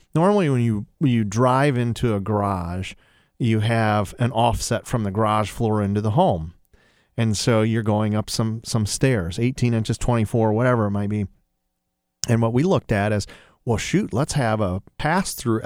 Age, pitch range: 40-59, 110-130 Hz